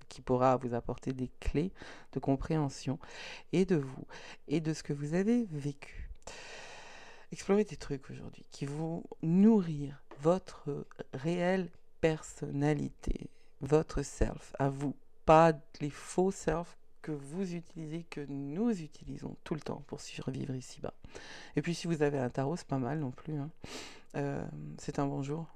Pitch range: 135-165 Hz